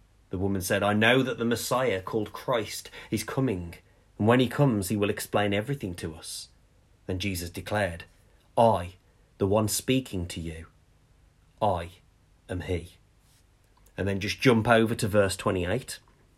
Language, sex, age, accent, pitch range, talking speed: English, male, 30-49, British, 95-120 Hz, 155 wpm